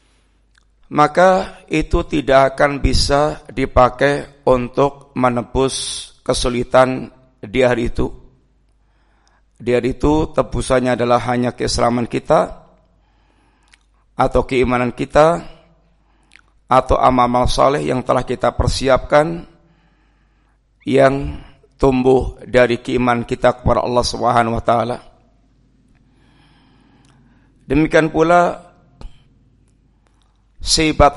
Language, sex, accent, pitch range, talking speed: Indonesian, male, native, 125-145 Hz, 85 wpm